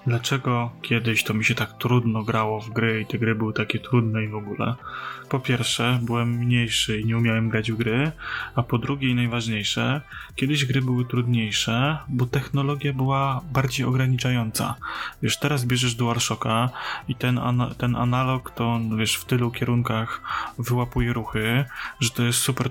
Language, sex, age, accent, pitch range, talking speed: Polish, male, 20-39, native, 115-125 Hz, 165 wpm